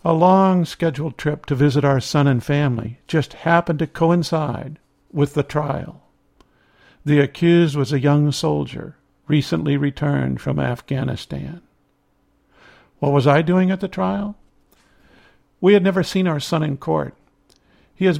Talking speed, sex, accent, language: 140 wpm, male, American, English